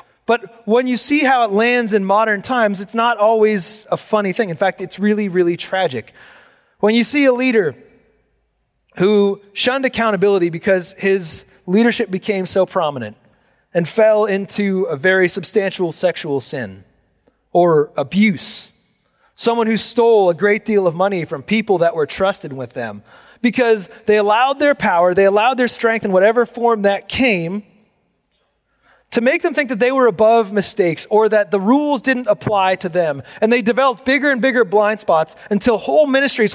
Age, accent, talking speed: 30-49, American, 170 wpm